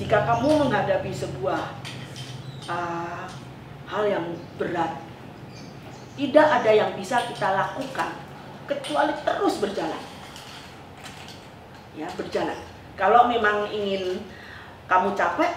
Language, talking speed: English, 95 wpm